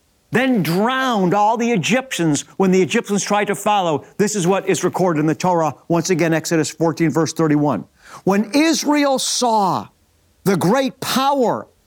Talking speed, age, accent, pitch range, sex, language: 155 wpm, 50-69, American, 160-225 Hz, male, English